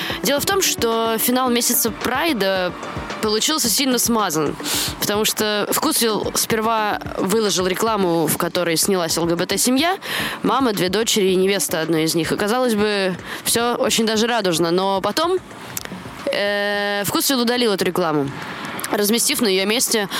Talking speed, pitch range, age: 130 wpm, 205-270 Hz, 20-39